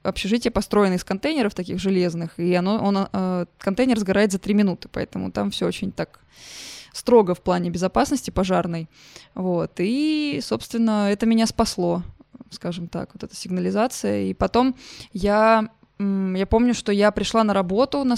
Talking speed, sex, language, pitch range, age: 145 wpm, female, Russian, 185-220 Hz, 20-39